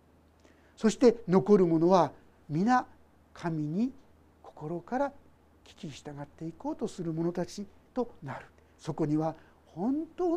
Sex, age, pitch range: male, 60-79, 175-245 Hz